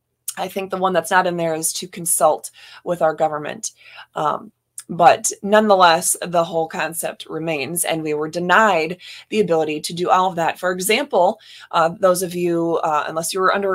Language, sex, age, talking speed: English, female, 20-39, 185 wpm